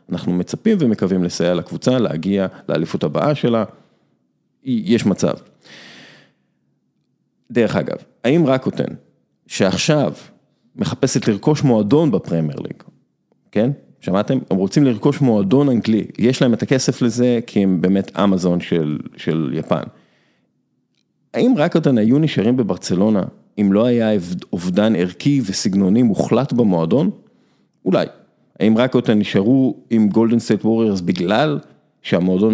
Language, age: Hebrew, 40-59